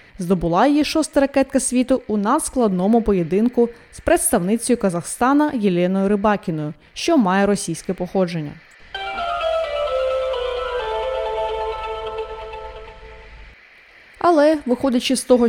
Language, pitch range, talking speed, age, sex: Ukrainian, 200-270 Hz, 80 wpm, 20-39, female